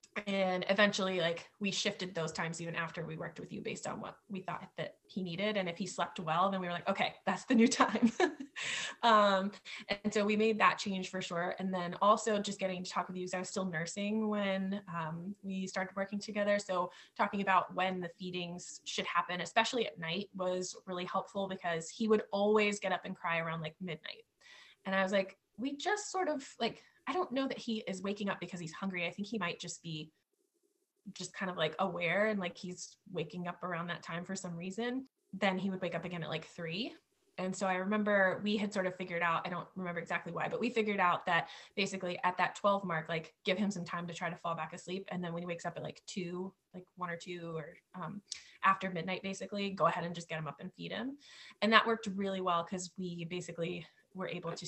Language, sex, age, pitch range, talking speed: English, female, 20-39, 175-205 Hz, 235 wpm